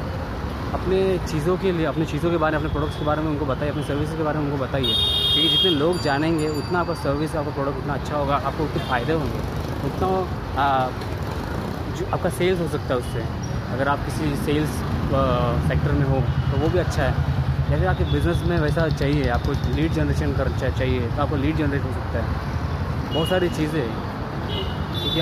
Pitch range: 110-150 Hz